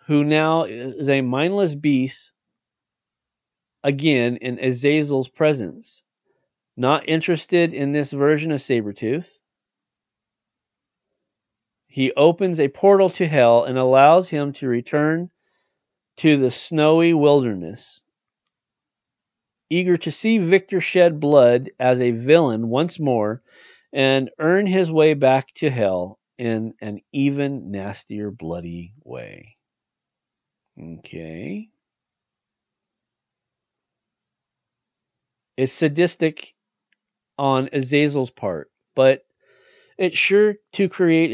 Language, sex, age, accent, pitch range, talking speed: English, male, 40-59, American, 125-165 Hz, 95 wpm